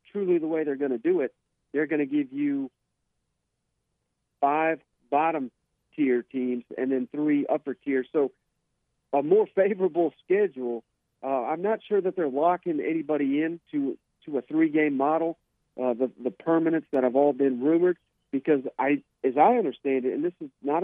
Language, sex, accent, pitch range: English, male, American, 135-175 Hz